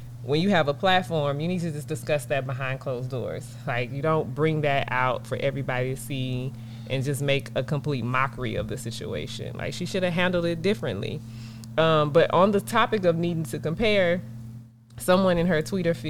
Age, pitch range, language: 20-39, 120-155 Hz, English